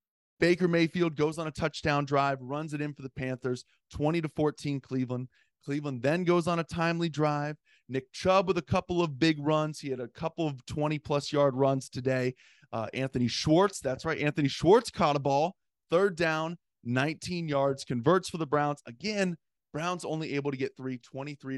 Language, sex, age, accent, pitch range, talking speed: English, male, 20-39, American, 130-160 Hz, 185 wpm